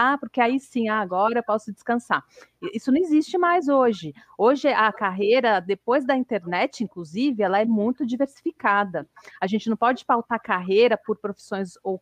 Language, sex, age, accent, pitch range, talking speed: Portuguese, female, 40-59, Brazilian, 200-260 Hz, 160 wpm